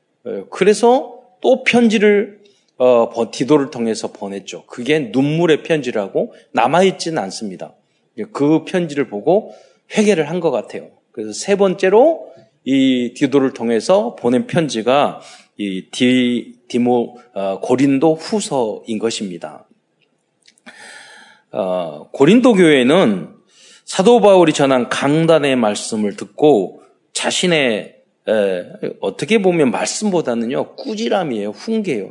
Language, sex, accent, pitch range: Korean, male, native, 120-185 Hz